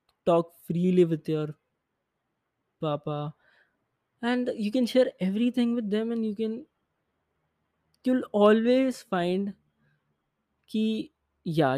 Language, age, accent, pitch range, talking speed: English, 20-39, Indian, 145-180 Hz, 100 wpm